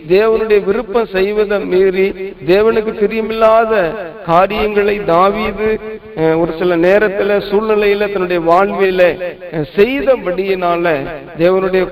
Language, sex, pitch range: Tamil, male, 165-205 Hz